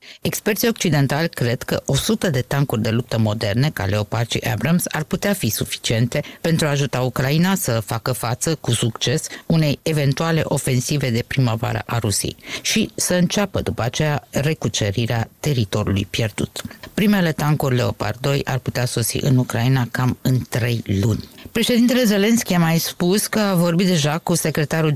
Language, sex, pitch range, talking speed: Romanian, female, 120-165 Hz, 160 wpm